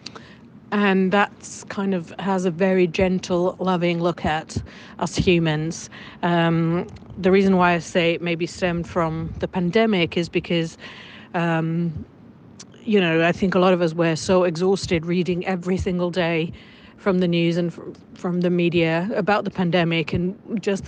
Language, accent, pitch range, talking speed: Finnish, British, 170-195 Hz, 160 wpm